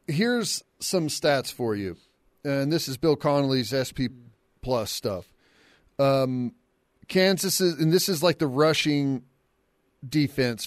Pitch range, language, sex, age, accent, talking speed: 130-165 Hz, English, male, 40-59, American, 130 wpm